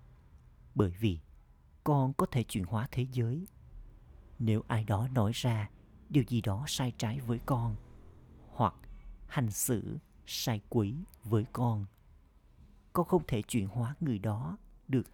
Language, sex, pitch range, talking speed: Vietnamese, male, 85-130 Hz, 145 wpm